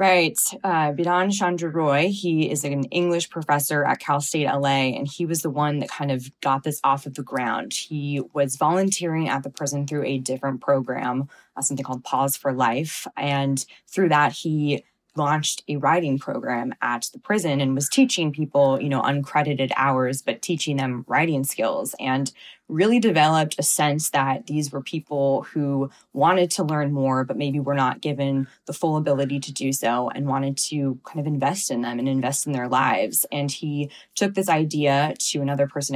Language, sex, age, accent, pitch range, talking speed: English, female, 20-39, American, 135-155 Hz, 190 wpm